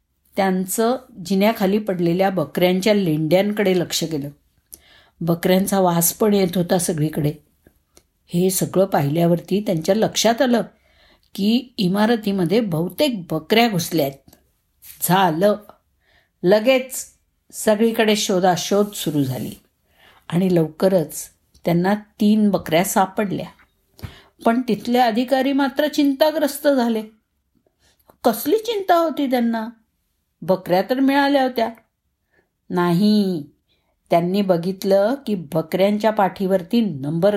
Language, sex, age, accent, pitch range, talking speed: Marathi, female, 50-69, native, 180-245 Hz, 90 wpm